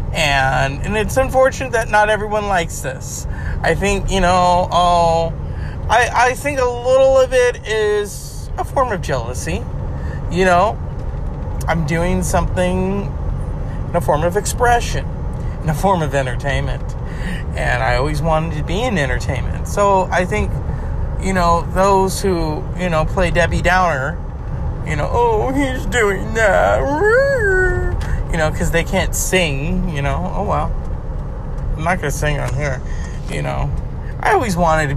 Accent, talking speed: American, 155 wpm